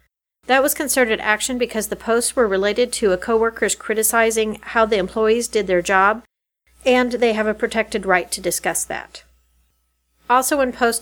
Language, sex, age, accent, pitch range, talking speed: English, female, 40-59, American, 205-255 Hz, 170 wpm